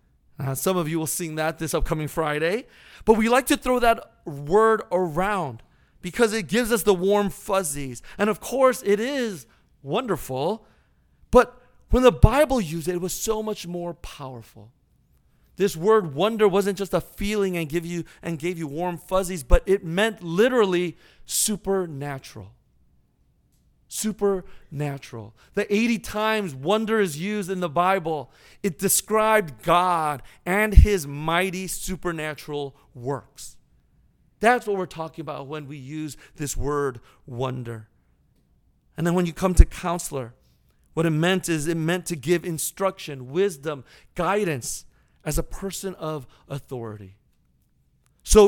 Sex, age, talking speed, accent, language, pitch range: male, 40-59, 140 wpm, American, English, 150-200 Hz